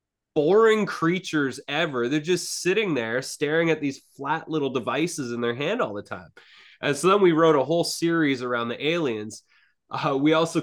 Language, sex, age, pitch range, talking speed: English, male, 20-39, 125-160 Hz, 185 wpm